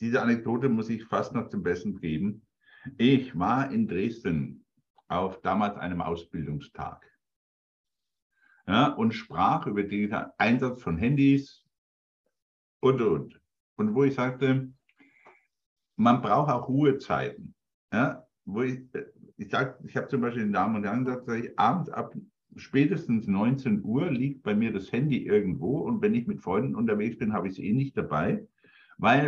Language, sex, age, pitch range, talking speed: German, male, 60-79, 115-150 Hz, 150 wpm